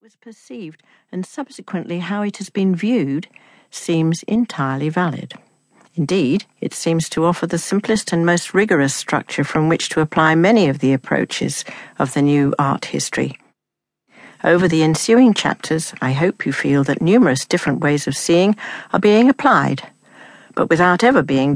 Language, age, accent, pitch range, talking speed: English, 60-79, British, 150-205 Hz, 160 wpm